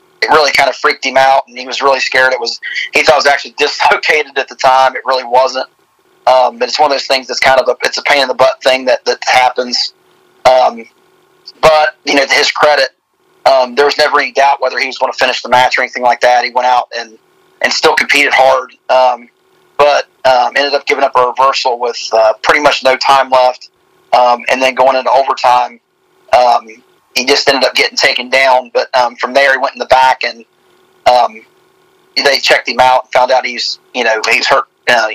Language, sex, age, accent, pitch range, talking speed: English, male, 30-49, American, 125-140 Hz, 225 wpm